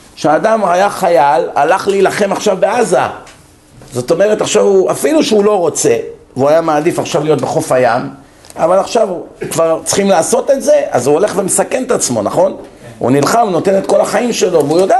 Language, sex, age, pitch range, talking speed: Hebrew, male, 50-69, 145-205 Hz, 180 wpm